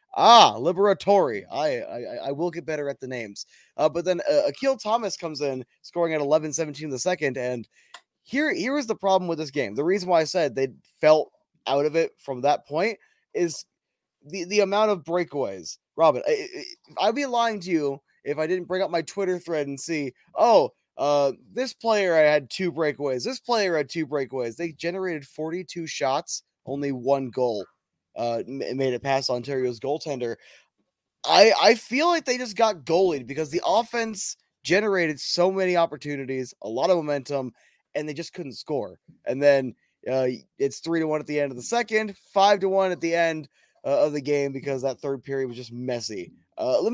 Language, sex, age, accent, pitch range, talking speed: English, male, 20-39, American, 140-200 Hz, 195 wpm